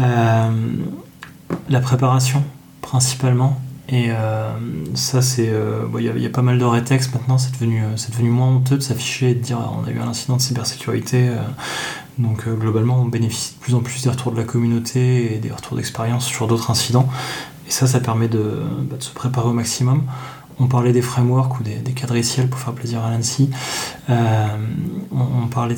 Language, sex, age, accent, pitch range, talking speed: French, male, 20-39, French, 115-130 Hz, 190 wpm